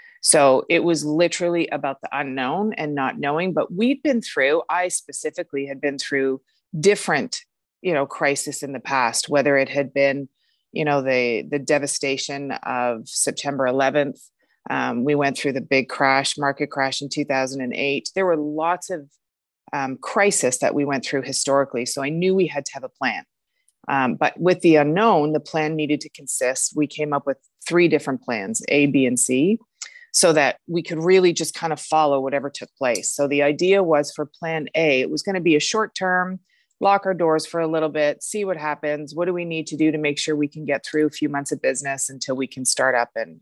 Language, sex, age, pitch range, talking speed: English, female, 30-49, 140-170 Hz, 205 wpm